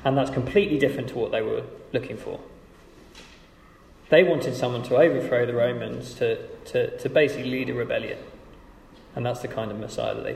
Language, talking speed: English, 185 wpm